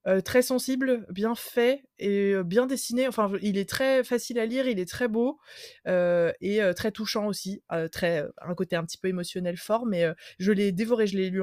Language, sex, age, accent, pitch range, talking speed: French, female, 20-39, French, 185-230 Hz, 235 wpm